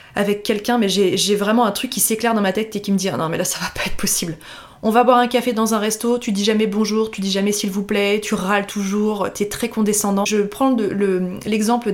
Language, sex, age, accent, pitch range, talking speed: French, female, 20-39, French, 195-230 Hz, 255 wpm